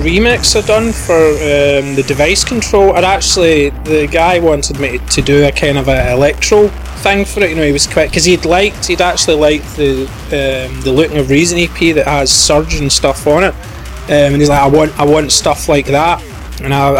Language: English